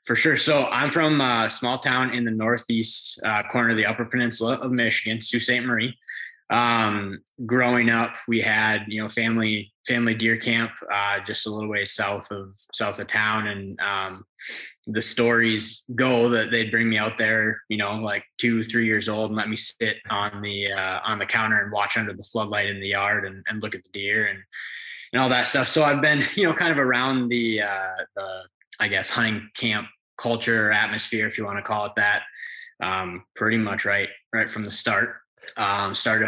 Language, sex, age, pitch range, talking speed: English, male, 20-39, 100-115 Hz, 205 wpm